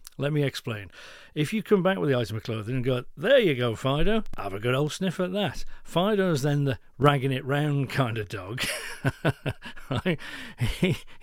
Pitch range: 115-140 Hz